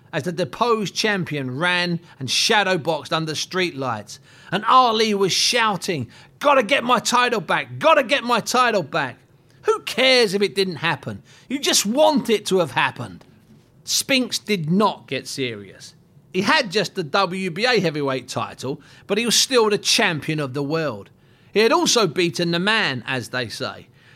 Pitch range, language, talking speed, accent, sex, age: 140-210 Hz, English, 165 wpm, British, male, 40-59